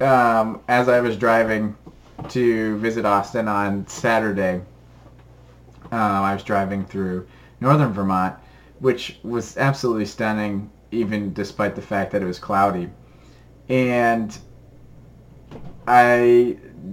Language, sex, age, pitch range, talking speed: English, male, 30-49, 100-140 Hz, 110 wpm